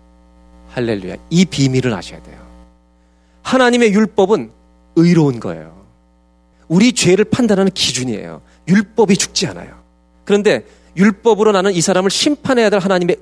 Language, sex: Korean, male